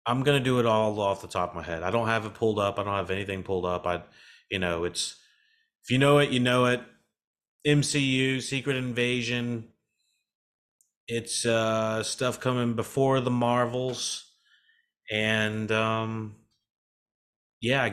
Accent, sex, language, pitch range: American, male, English, 105-130 Hz